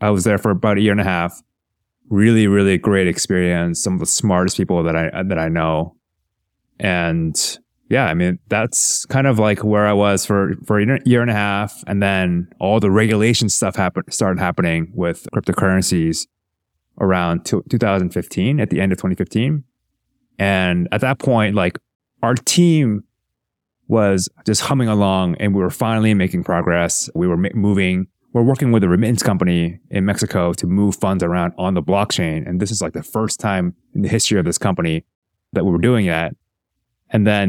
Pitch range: 90-115 Hz